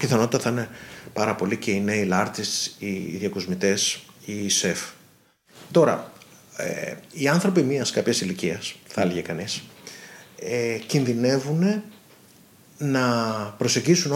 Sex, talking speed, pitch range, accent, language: male, 115 wpm, 115-150 Hz, native, Greek